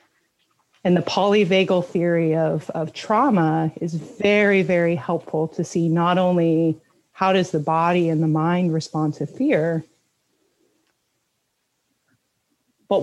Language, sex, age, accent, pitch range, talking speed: English, female, 30-49, American, 165-200 Hz, 120 wpm